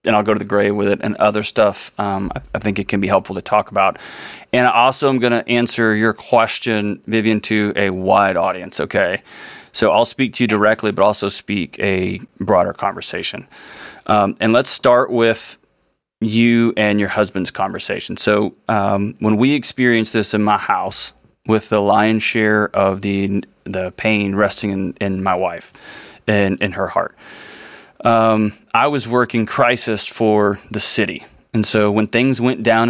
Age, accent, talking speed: 30-49, American, 180 wpm